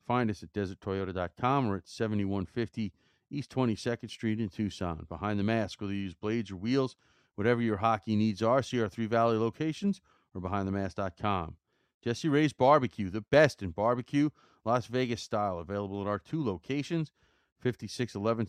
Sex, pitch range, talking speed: male, 100-130 Hz, 160 wpm